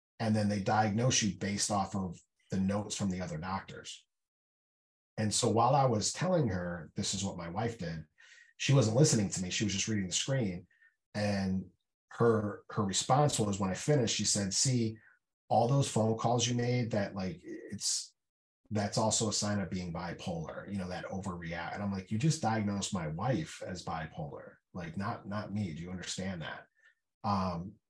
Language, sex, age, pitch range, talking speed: English, male, 30-49, 95-115 Hz, 190 wpm